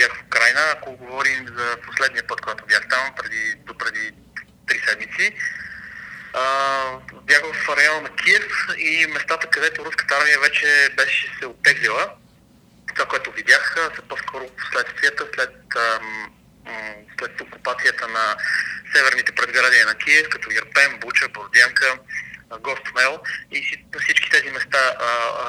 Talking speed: 130 wpm